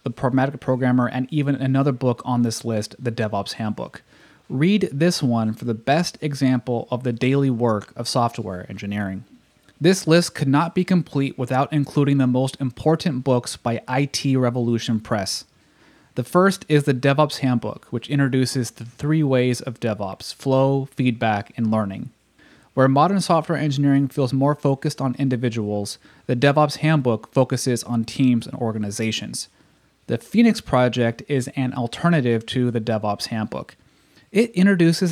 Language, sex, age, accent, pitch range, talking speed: English, male, 30-49, American, 120-145 Hz, 150 wpm